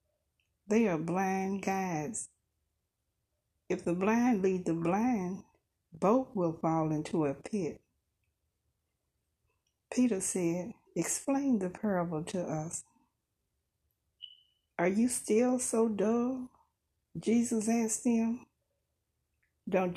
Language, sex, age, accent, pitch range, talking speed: English, female, 60-79, American, 165-225 Hz, 95 wpm